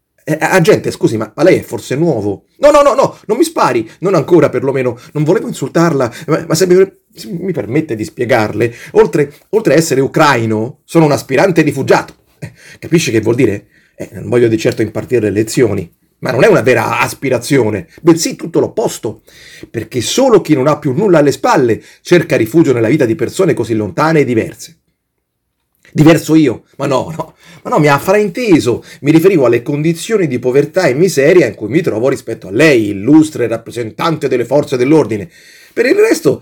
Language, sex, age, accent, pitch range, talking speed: Italian, male, 40-59, native, 120-170 Hz, 190 wpm